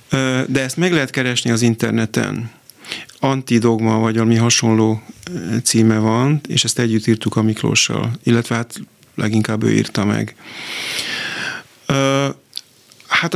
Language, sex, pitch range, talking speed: Hungarian, male, 115-130 Hz, 115 wpm